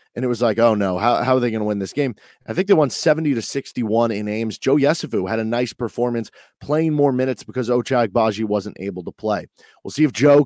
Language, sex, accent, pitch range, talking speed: English, male, American, 110-140 Hz, 245 wpm